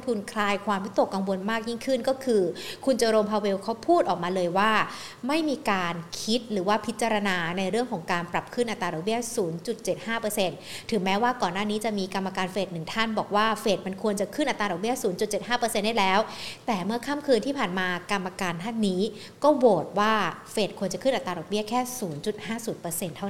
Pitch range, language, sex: 205-260 Hz, Thai, female